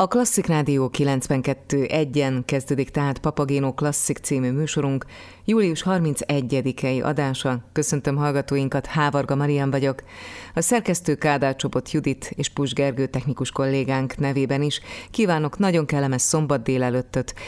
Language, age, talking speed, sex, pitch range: Hungarian, 30-49, 115 wpm, female, 130-150 Hz